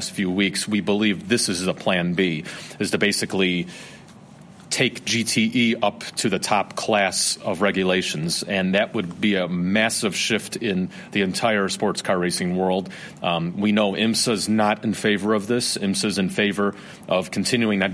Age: 30-49